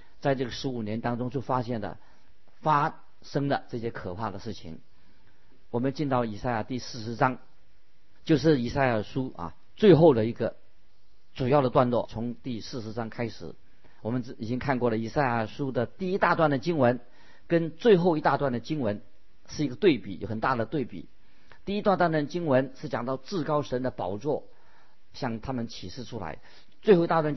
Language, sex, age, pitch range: Chinese, male, 50-69, 110-140 Hz